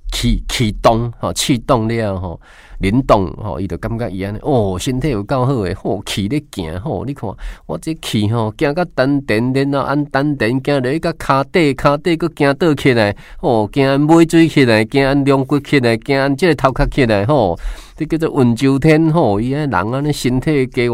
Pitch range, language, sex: 100-140 Hz, Chinese, male